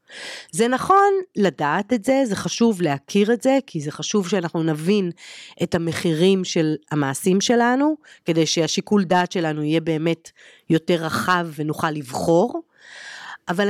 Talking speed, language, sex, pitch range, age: 135 wpm, Hebrew, female, 160-245 Hz, 40-59